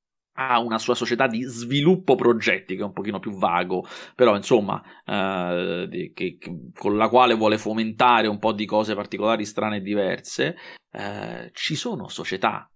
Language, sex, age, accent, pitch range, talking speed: Italian, male, 30-49, native, 105-140 Hz, 165 wpm